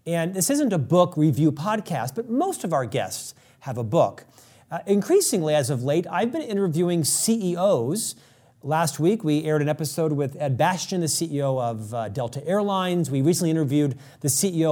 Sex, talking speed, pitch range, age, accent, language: male, 180 wpm, 140-175 Hz, 40-59, American, English